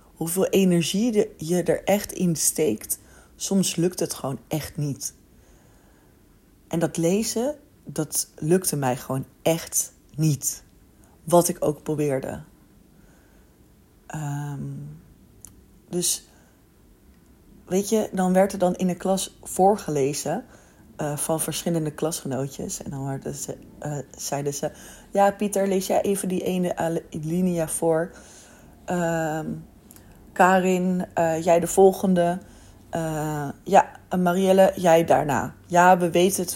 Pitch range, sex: 145-190 Hz, female